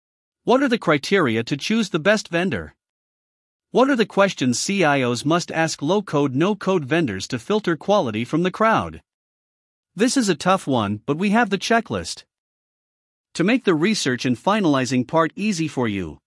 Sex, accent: male, American